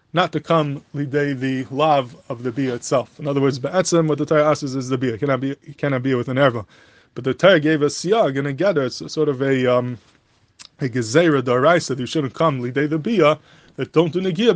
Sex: male